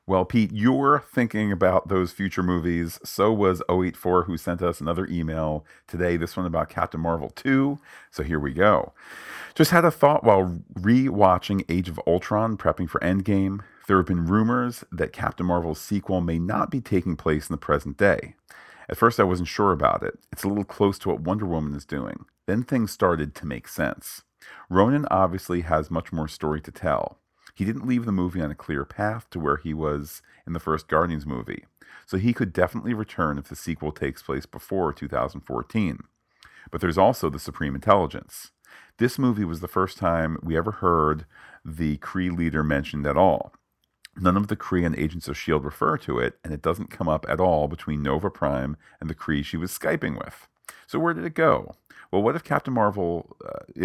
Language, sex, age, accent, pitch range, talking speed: English, male, 40-59, American, 80-100 Hz, 195 wpm